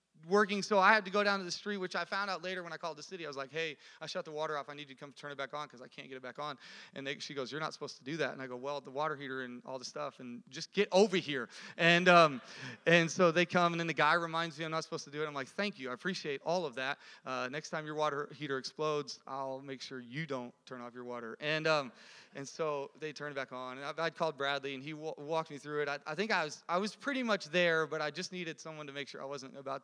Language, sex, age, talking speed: English, male, 30-49, 310 wpm